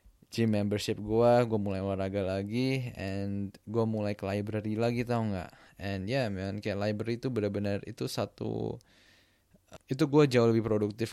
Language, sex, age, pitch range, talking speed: Indonesian, male, 20-39, 100-115 Hz, 155 wpm